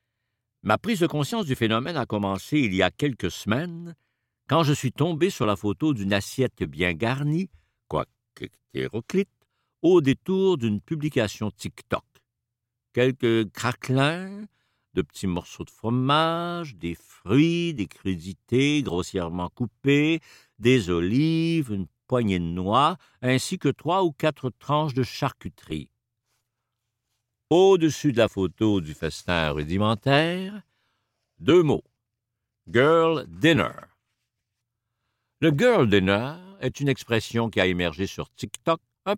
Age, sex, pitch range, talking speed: 60-79, male, 100-145 Hz, 130 wpm